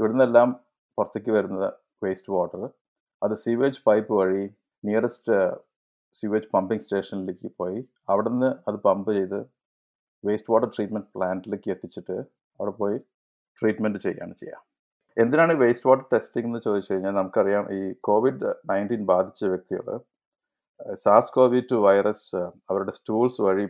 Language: Malayalam